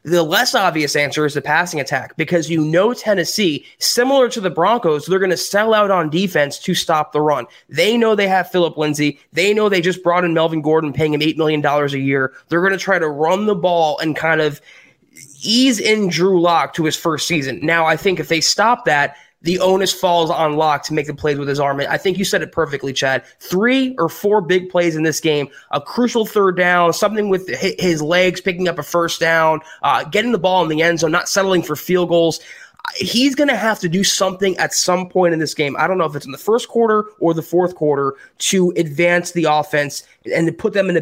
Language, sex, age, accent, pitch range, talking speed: English, male, 20-39, American, 155-190 Hz, 235 wpm